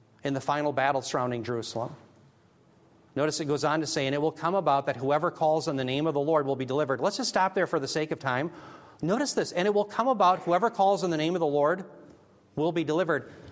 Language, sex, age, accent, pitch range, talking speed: English, male, 40-59, American, 155-235 Hz, 250 wpm